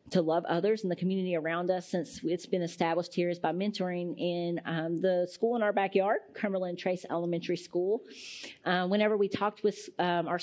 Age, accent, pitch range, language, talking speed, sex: 40-59, American, 175-205 Hz, English, 195 wpm, female